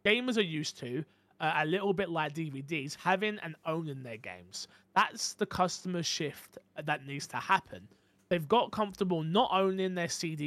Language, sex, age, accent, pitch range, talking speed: English, male, 20-39, British, 140-185 Hz, 170 wpm